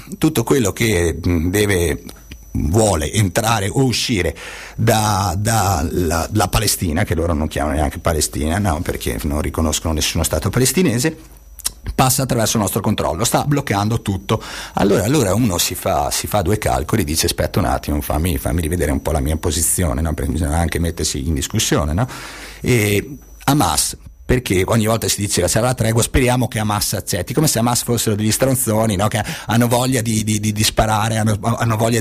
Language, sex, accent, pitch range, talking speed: Italian, male, native, 90-125 Hz, 175 wpm